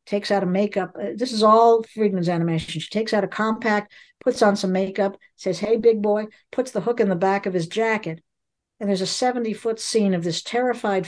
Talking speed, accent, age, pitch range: 215 wpm, American, 60-79, 175-215 Hz